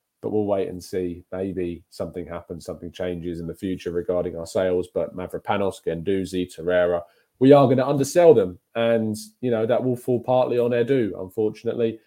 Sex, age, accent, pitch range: male, 20-39, British, 110-150 Hz